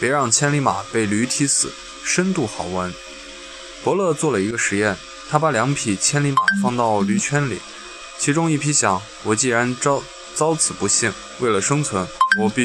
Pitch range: 110-170 Hz